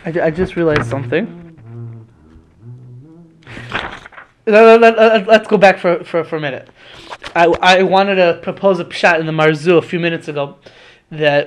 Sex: male